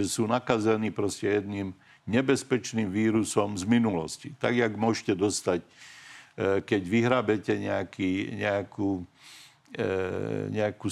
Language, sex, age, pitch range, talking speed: Slovak, male, 50-69, 100-120 Hz, 95 wpm